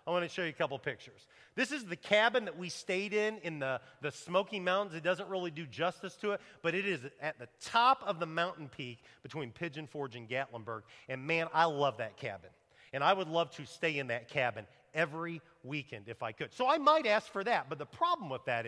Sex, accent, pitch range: male, American, 150-225 Hz